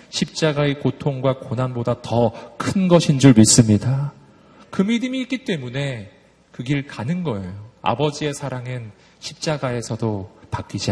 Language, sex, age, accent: Korean, male, 40-59, native